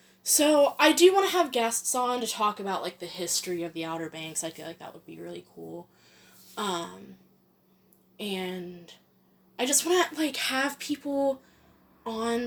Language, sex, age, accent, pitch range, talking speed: English, female, 10-29, American, 180-250 Hz, 175 wpm